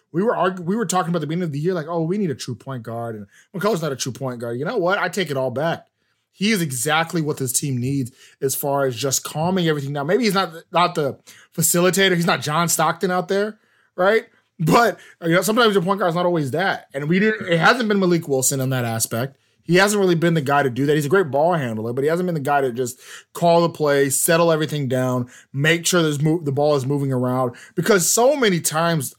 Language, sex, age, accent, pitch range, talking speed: English, male, 20-39, American, 135-180 Hz, 255 wpm